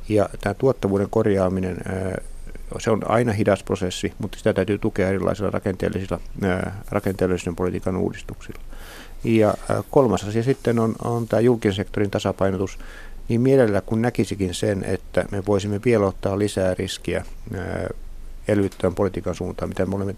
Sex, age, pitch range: male, 60-79, 95-110 Hz